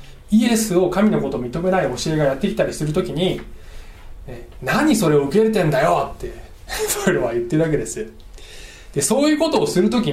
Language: Japanese